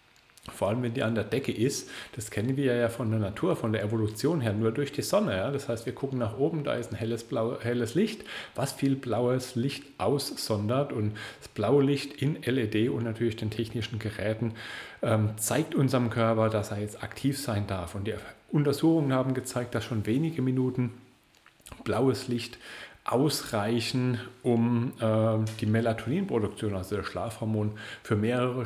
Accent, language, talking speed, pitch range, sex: German, German, 170 wpm, 110-130 Hz, male